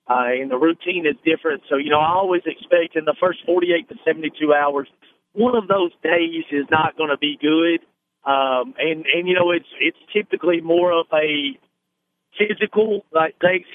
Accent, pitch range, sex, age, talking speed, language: American, 140-170 Hz, male, 40-59, 190 wpm, English